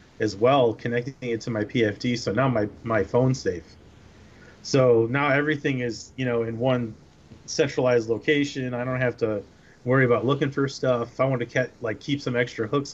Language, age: English, 30-49